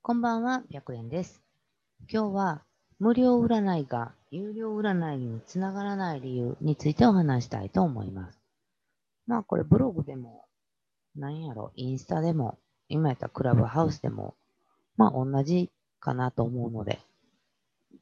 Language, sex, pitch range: Japanese, female, 120-190 Hz